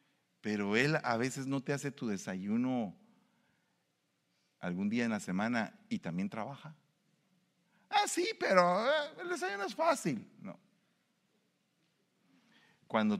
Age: 40-59